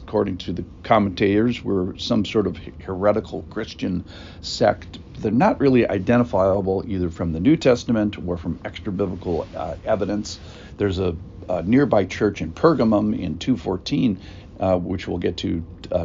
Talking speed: 145 wpm